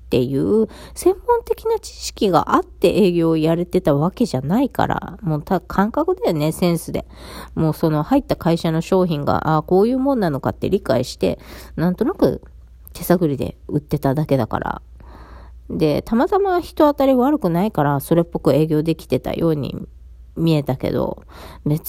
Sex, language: female, Japanese